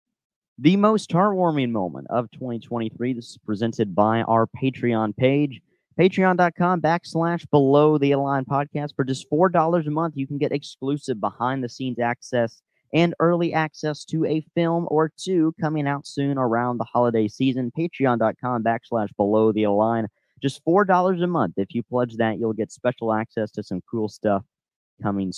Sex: male